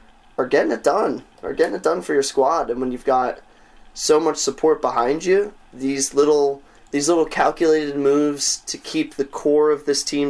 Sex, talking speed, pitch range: male, 190 wpm, 125-155 Hz